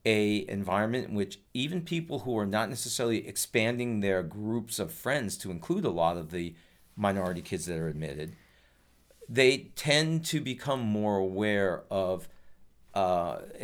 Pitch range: 90-115 Hz